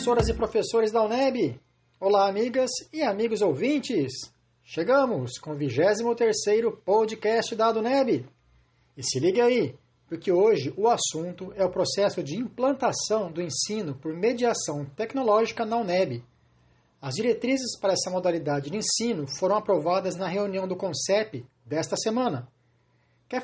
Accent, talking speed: Brazilian, 135 wpm